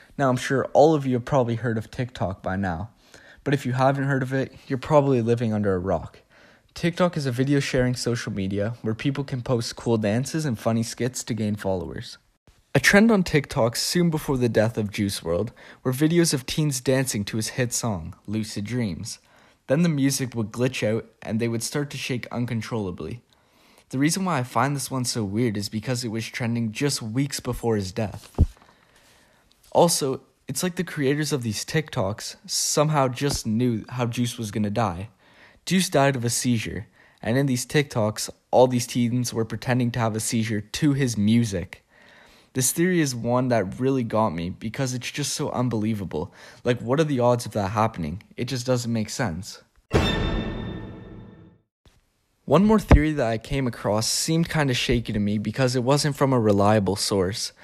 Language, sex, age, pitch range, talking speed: English, male, 20-39, 110-135 Hz, 190 wpm